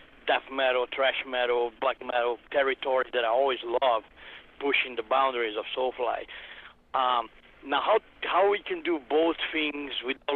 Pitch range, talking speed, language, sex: 130-160 Hz, 150 wpm, English, male